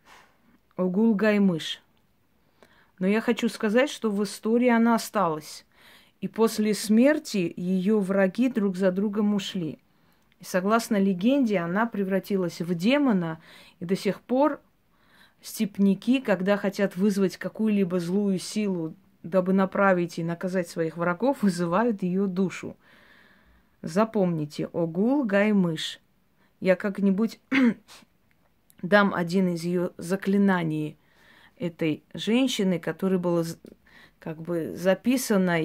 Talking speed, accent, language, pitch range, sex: 110 wpm, native, Russian, 175-210 Hz, female